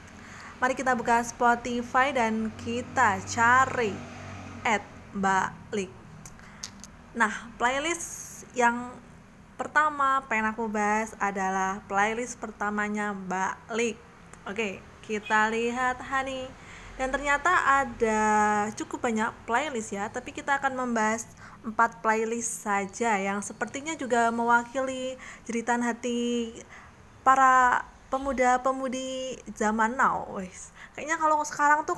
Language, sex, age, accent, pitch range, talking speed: Indonesian, female, 20-39, native, 210-260 Hz, 100 wpm